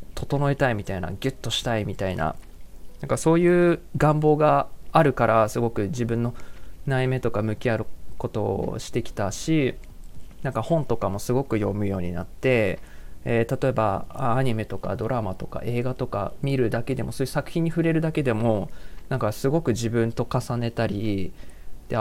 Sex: male